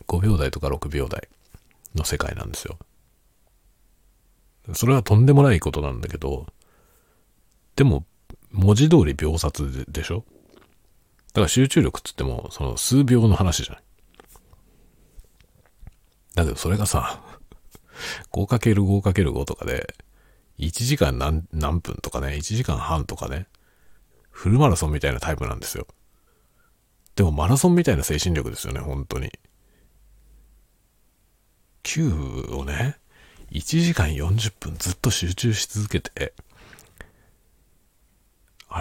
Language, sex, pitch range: Japanese, male, 75-105 Hz